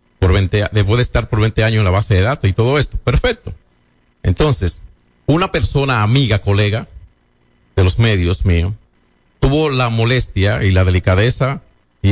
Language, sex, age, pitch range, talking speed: Spanish, male, 50-69, 95-130 Hz, 165 wpm